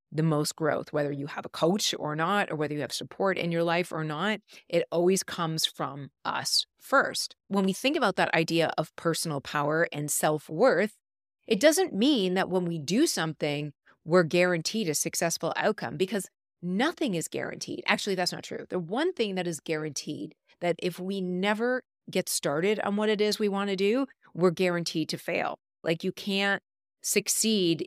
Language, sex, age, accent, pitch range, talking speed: English, female, 30-49, American, 155-200 Hz, 185 wpm